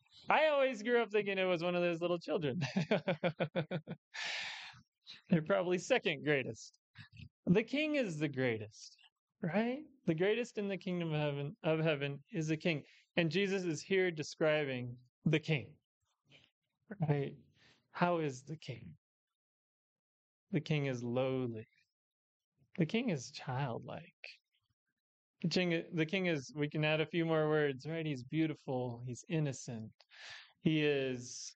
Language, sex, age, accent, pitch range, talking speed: English, male, 20-39, American, 135-175 Hz, 135 wpm